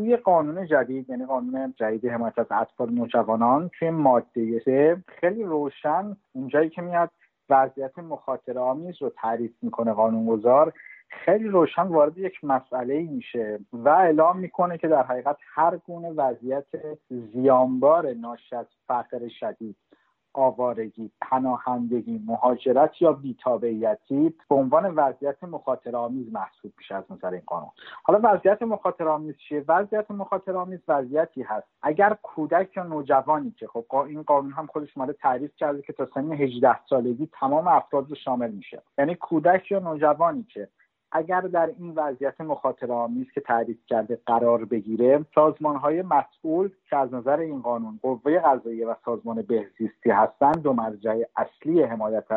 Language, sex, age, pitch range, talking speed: Persian, male, 50-69, 120-165 Hz, 140 wpm